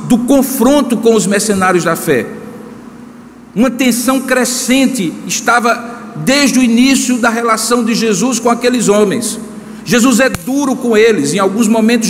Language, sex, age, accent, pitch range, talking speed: Portuguese, male, 50-69, Brazilian, 220-255 Hz, 145 wpm